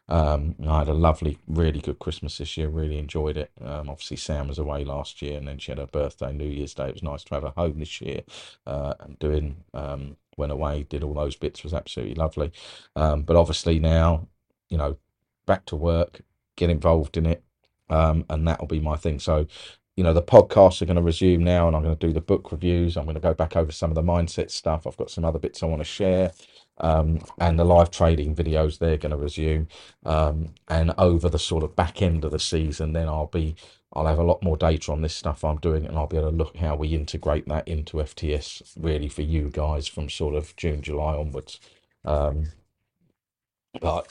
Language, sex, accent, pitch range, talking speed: English, male, British, 75-85 Hz, 220 wpm